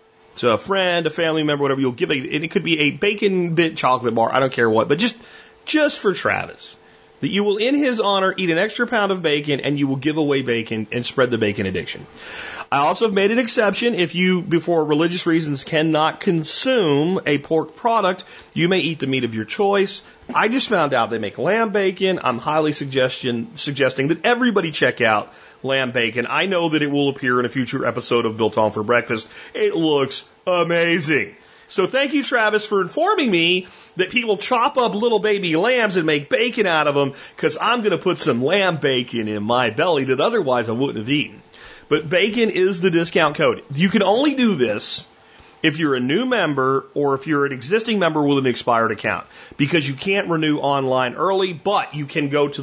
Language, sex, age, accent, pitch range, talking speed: English, male, 30-49, American, 135-195 Hz, 210 wpm